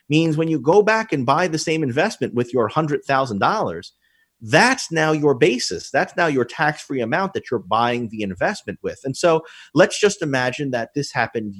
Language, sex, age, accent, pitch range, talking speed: English, male, 30-49, American, 115-160 Hz, 185 wpm